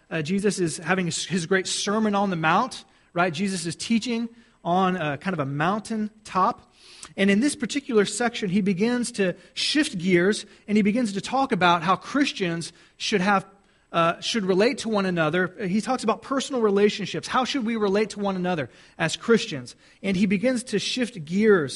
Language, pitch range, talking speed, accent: English, 180-230 Hz, 175 wpm, American